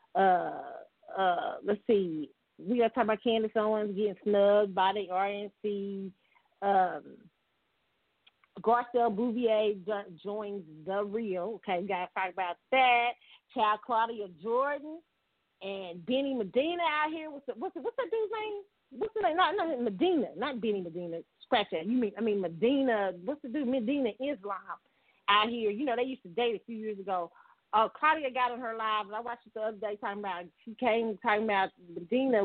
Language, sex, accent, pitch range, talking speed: English, female, American, 200-255 Hz, 180 wpm